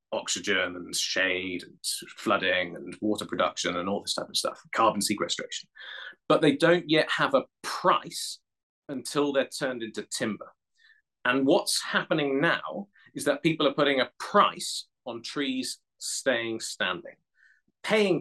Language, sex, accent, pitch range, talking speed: English, male, British, 125-170 Hz, 145 wpm